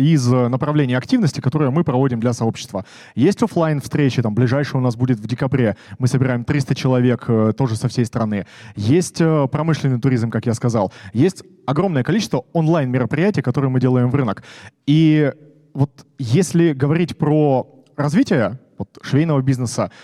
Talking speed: 145 wpm